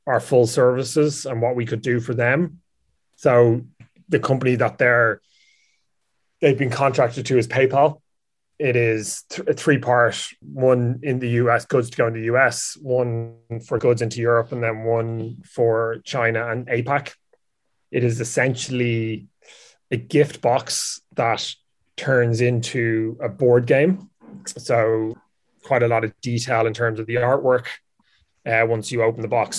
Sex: male